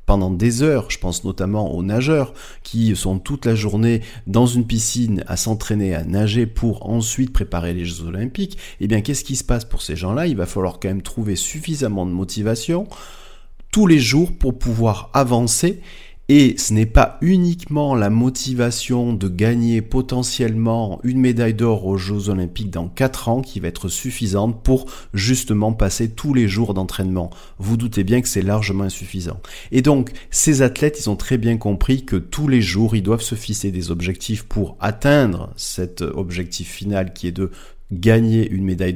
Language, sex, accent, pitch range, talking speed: French, male, French, 95-130 Hz, 180 wpm